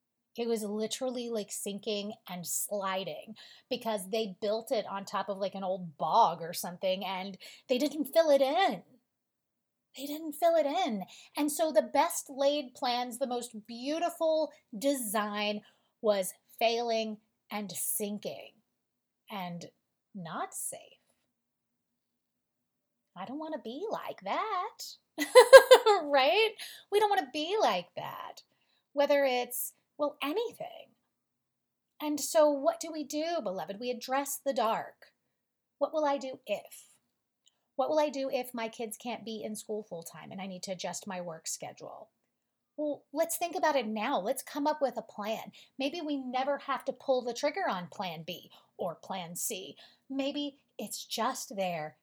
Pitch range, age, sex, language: 205-295 Hz, 30-49, female, English